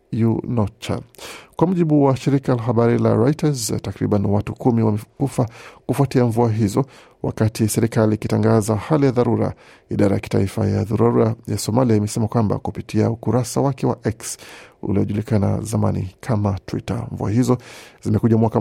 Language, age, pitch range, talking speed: Swahili, 50-69, 105-125 Hz, 140 wpm